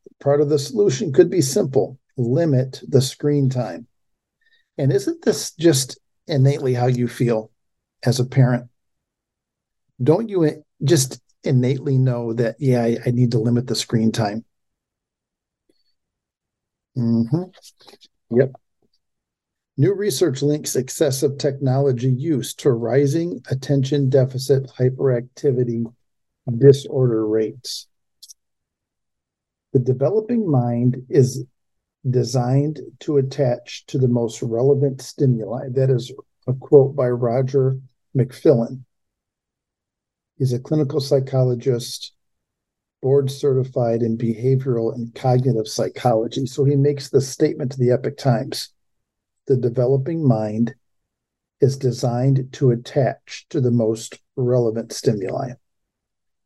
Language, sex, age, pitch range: English, male, 50-69, 120-140 Hz